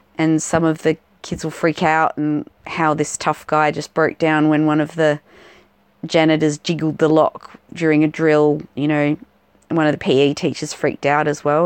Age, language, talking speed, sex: 30-49, English, 200 wpm, female